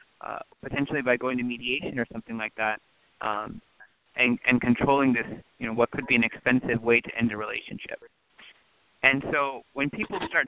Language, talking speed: English, 170 wpm